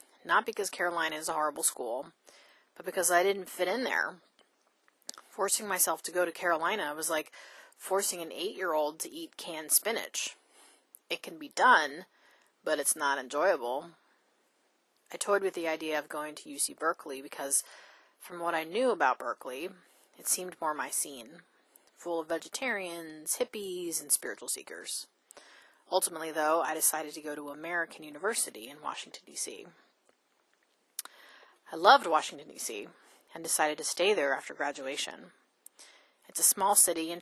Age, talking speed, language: 30-49, 150 wpm, English